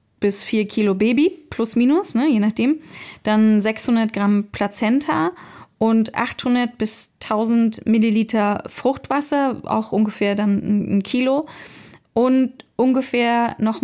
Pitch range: 210-250 Hz